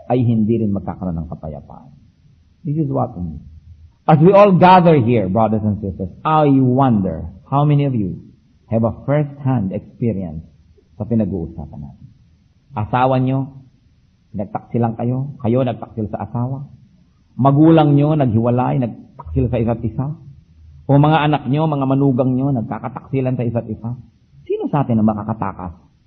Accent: Filipino